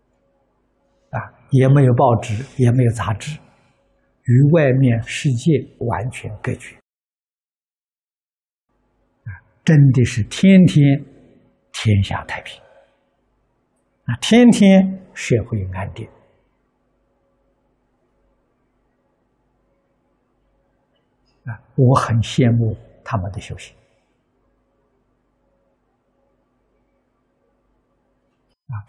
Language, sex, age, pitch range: Chinese, male, 60-79, 110-140 Hz